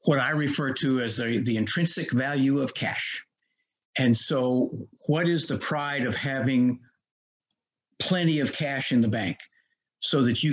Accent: American